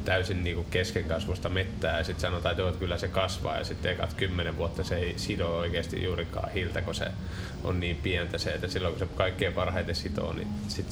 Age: 20-39